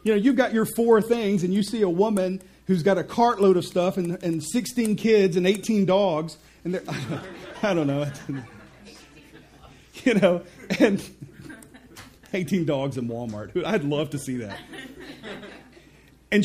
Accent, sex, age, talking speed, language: American, male, 40-59, 155 wpm, English